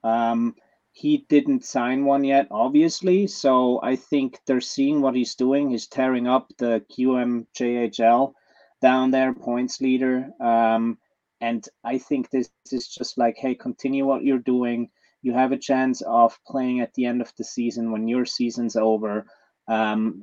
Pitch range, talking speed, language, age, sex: 115-130 Hz, 165 wpm, English, 30-49, male